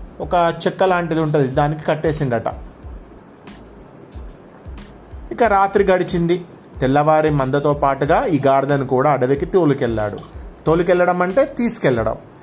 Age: 30-49